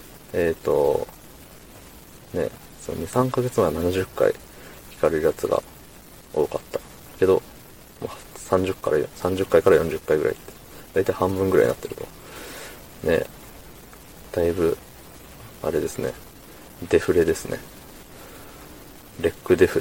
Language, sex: Japanese, male